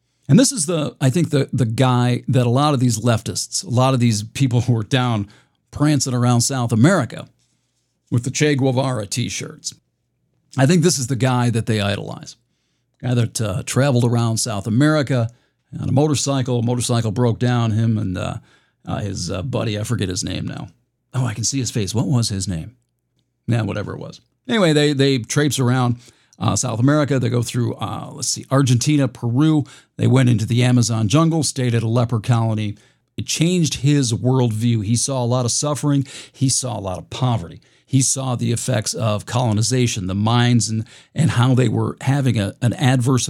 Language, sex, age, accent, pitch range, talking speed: English, male, 50-69, American, 115-135 Hz, 195 wpm